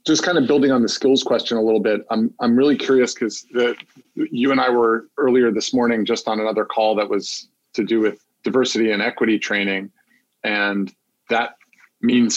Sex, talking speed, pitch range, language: male, 190 wpm, 105-120 Hz, English